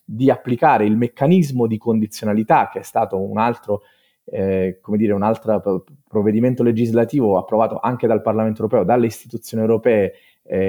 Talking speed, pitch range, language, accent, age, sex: 150 wpm, 105-130 Hz, Italian, native, 30-49, male